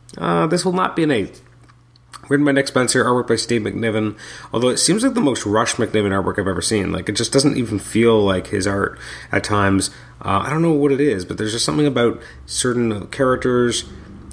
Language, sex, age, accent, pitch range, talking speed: English, male, 30-49, American, 100-130 Hz, 220 wpm